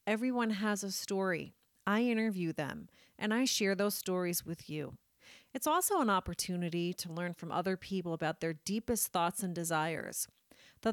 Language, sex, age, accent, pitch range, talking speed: English, female, 40-59, American, 180-235 Hz, 165 wpm